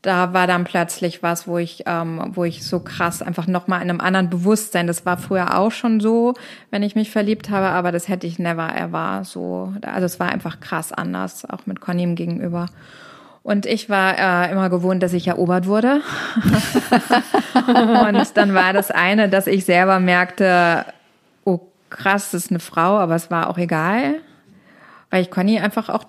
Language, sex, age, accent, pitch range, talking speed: German, female, 20-39, German, 180-215 Hz, 190 wpm